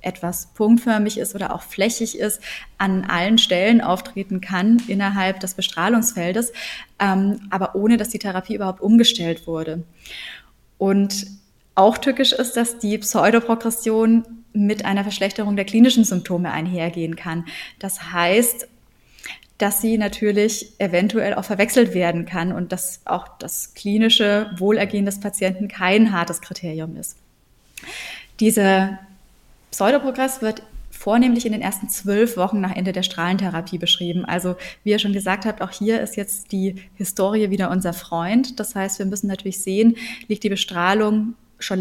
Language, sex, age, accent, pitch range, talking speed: German, female, 20-39, German, 185-220 Hz, 140 wpm